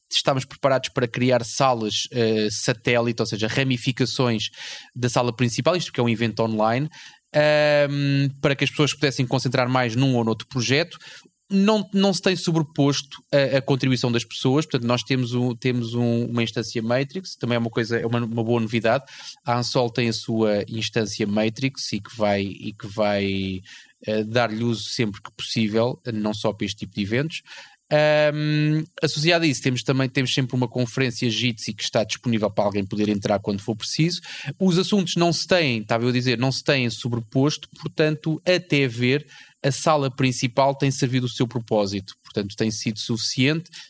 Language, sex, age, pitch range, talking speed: Portuguese, male, 20-39, 115-140 Hz, 180 wpm